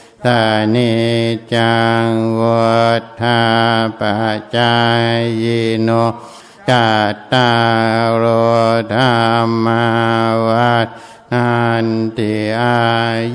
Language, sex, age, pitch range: Thai, male, 60-79, 115-120 Hz